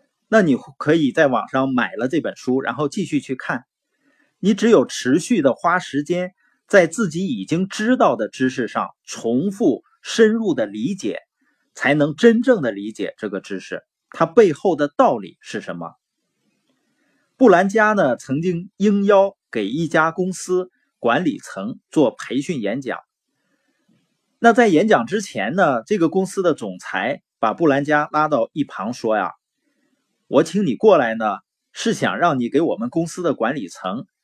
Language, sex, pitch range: Chinese, male, 160-250 Hz